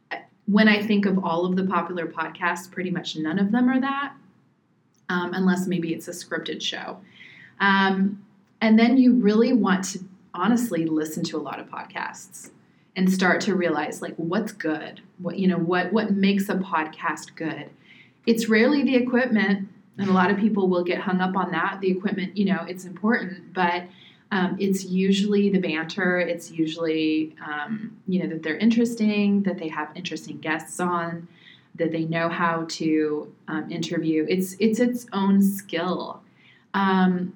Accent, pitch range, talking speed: American, 170-205 Hz, 170 wpm